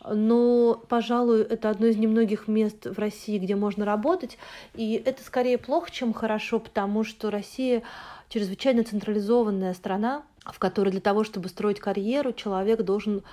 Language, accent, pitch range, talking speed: Russian, native, 190-230 Hz, 150 wpm